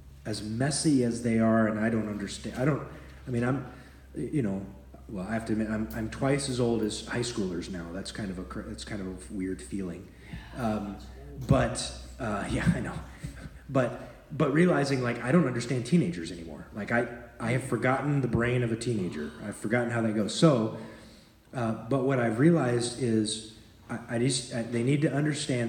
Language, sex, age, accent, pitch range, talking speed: English, male, 30-49, American, 105-125 Hz, 200 wpm